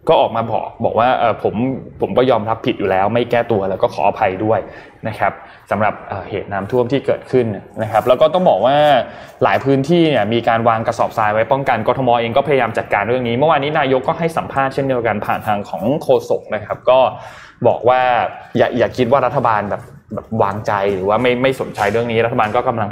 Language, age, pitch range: Thai, 20-39, 110-140 Hz